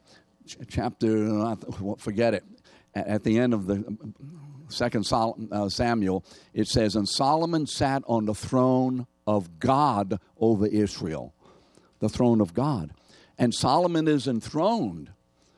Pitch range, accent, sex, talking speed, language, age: 95-135 Hz, American, male, 120 wpm, English, 60-79